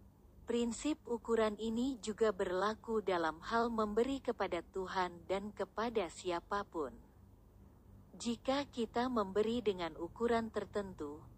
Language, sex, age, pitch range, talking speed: Indonesian, female, 40-59, 175-230 Hz, 100 wpm